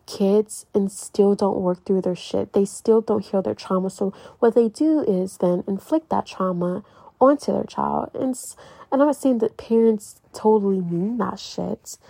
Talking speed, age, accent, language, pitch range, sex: 185 wpm, 20-39, American, English, 195-285 Hz, female